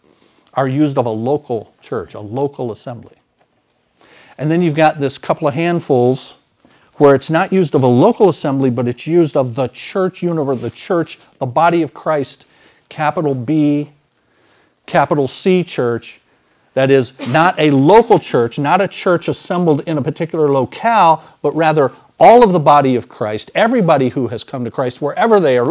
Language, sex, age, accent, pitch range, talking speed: English, male, 50-69, American, 135-180 Hz, 175 wpm